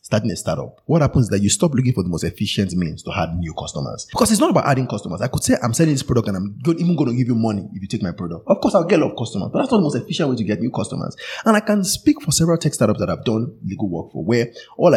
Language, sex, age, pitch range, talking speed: English, male, 30-49, 100-170 Hz, 320 wpm